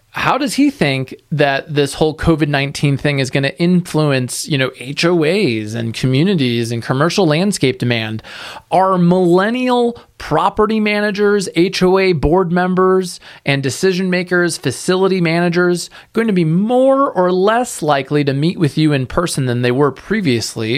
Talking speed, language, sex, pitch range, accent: 145 wpm, English, male, 135-180 Hz, American